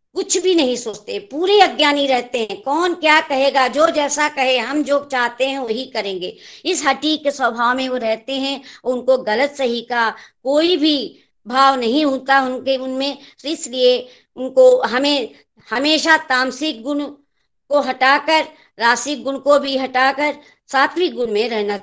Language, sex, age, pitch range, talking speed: Hindi, male, 50-69, 250-315 Hz, 155 wpm